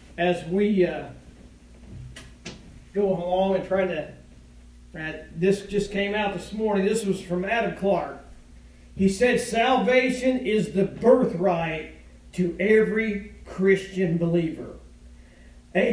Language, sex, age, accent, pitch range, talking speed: English, male, 50-69, American, 145-215 Hz, 115 wpm